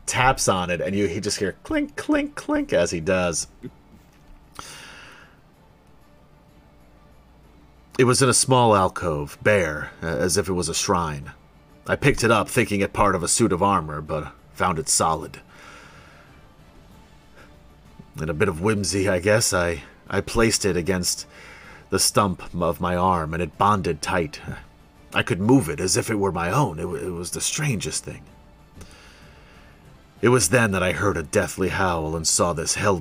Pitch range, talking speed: 85-105 Hz, 170 wpm